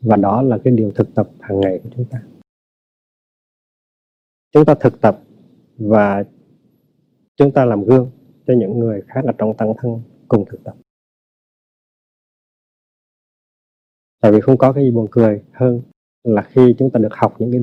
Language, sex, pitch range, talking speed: Vietnamese, male, 110-135 Hz, 165 wpm